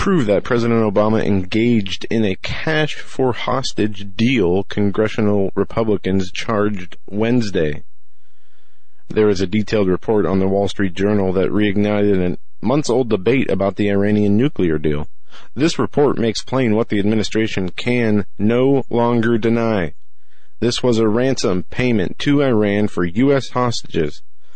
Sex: male